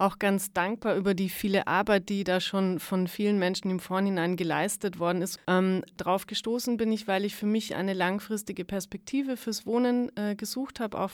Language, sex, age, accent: German, female, 30-49, German